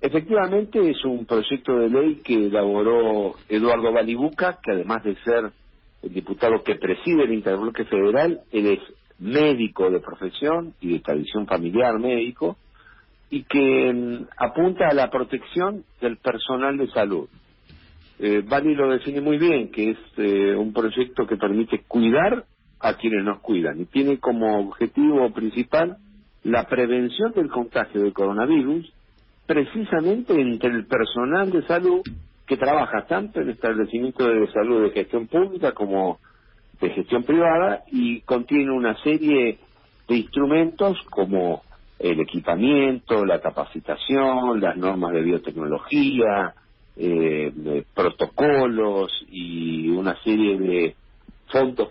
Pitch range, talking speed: 100-145 Hz, 130 wpm